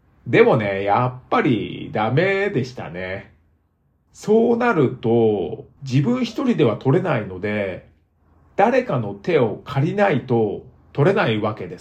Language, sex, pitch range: Japanese, male, 100-165 Hz